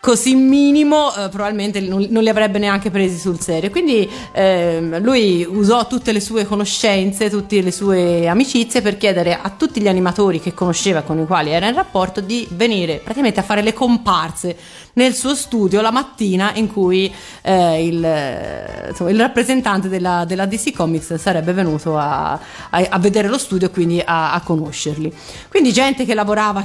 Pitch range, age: 175-220 Hz, 30-49